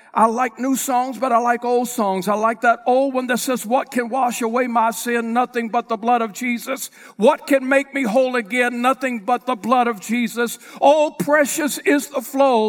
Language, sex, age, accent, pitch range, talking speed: English, male, 60-79, American, 180-250 Hz, 215 wpm